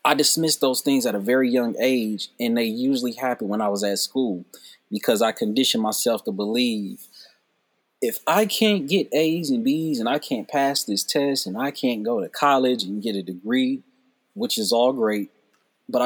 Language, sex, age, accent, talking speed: English, male, 30-49, American, 195 wpm